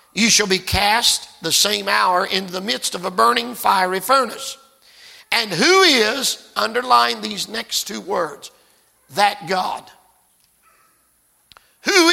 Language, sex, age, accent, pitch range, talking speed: English, male, 50-69, American, 190-245 Hz, 130 wpm